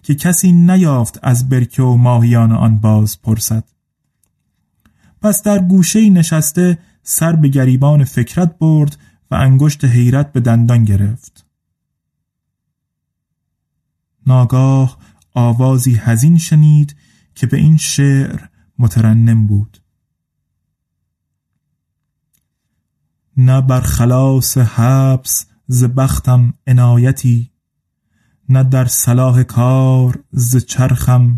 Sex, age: male, 30-49